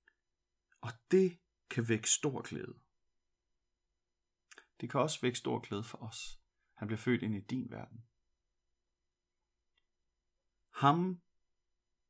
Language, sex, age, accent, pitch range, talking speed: Danish, male, 40-59, native, 110-145 Hz, 105 wpm